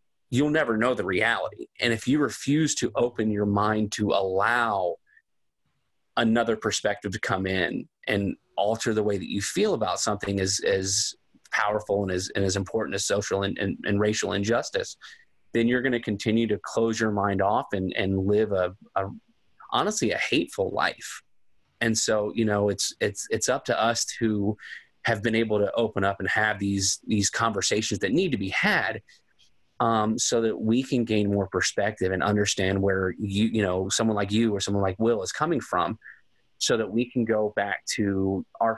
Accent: American